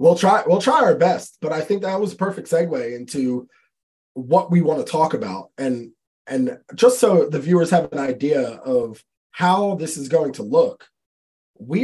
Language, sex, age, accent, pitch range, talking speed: English, male, 20-39, American, 140-190 Hz, 195 wpm